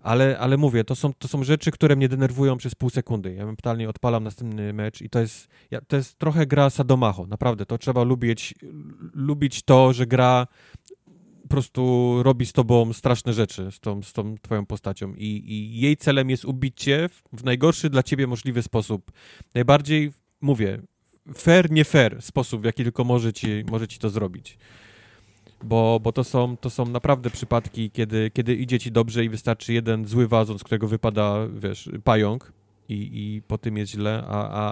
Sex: male